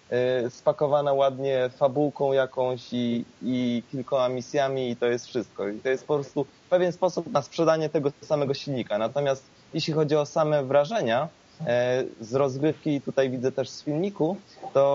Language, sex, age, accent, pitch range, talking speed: Polish, male, 20-39, native, 130-155 Hz, 155 wpm